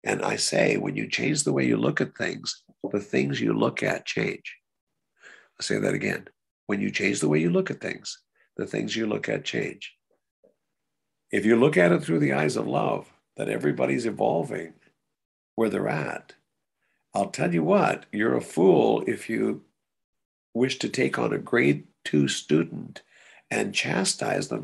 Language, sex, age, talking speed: English, male, 60-79, 180 wpm